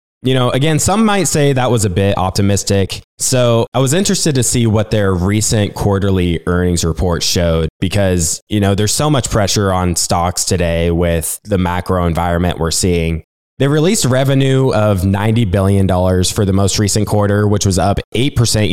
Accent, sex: American, male